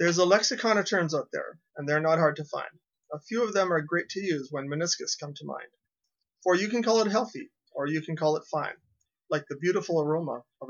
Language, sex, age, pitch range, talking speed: English, male, 30-49, 150-200 Hz, 240 wpm